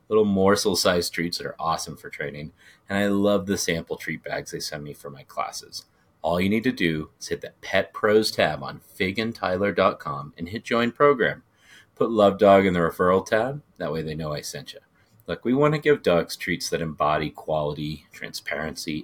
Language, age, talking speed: English, 30-49, 200 wpm